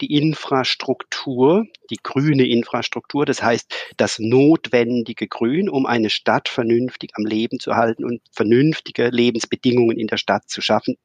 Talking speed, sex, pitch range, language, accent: 140 wpm, male, 115-140 Hz, German, German